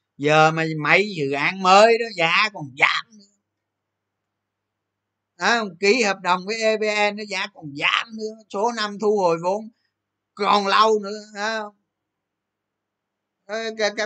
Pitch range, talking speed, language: 130-195 Hz, 130 wpm, Vietnamese